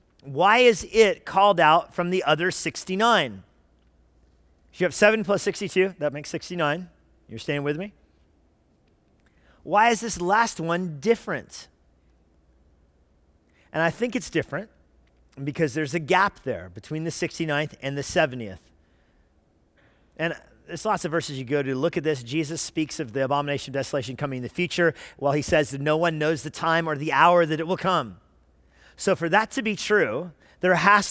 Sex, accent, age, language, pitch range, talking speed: male, American, 40-59, English, 125-180 Hz, 175 wpm